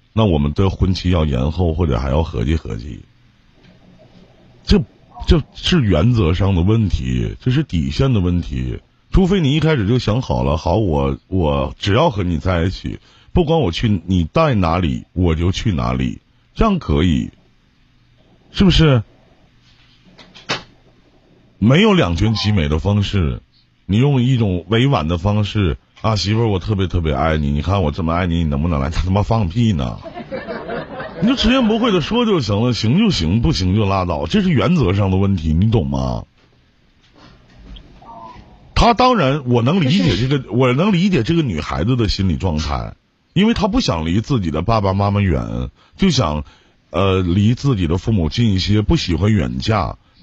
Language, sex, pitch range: Chinese, male, 85-130 Hz